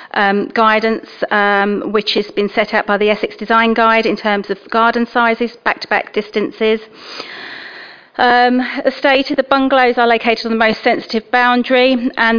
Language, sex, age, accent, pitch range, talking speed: English, female, 30-49, British, 205-240 Hz, 160 wpm